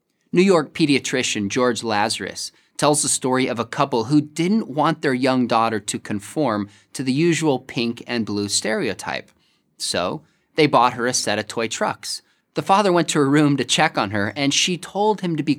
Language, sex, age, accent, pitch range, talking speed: English, male, 20-39, American, 115-160 Hz, 195 wpm